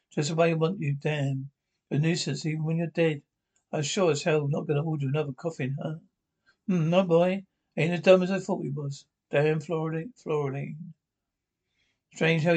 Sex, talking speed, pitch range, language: male, 190 wpm, 145-175 Hz, English